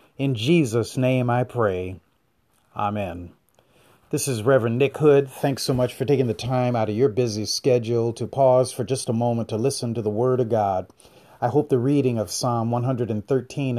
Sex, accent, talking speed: male, American, 185 wpm